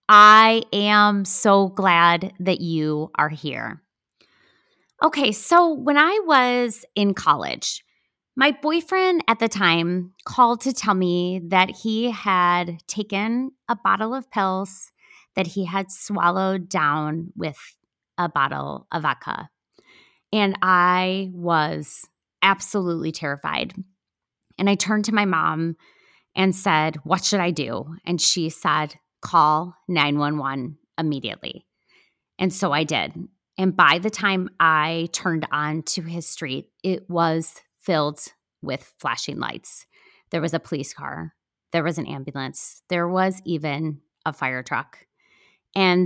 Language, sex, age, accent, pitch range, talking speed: English, female, 20-39, American, 165-210 Hz, 130 wpm